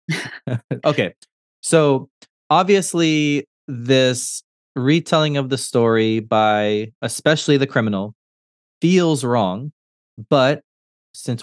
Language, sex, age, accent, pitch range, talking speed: English, male, 20-39, American, 115-150 Hz, 85 wpm